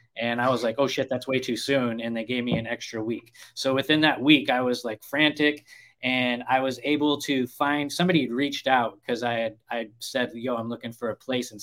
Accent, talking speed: American, 240 wpm